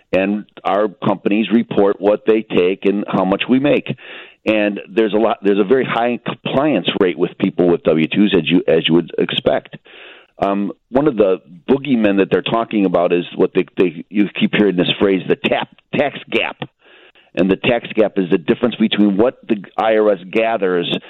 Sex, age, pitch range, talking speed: male, 50-69, 95-110 Hz, 190 wpm